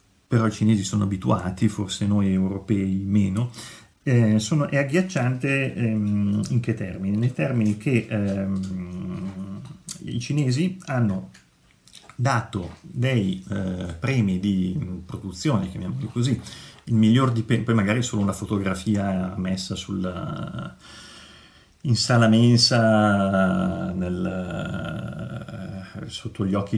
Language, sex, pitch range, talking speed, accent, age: Italian, male, 95-120 Hz, 115 wpm, native, 40-59